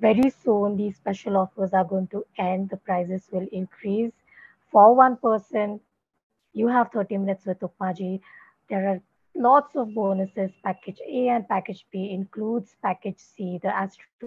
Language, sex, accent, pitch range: English, female, Indian, 185-220 Hz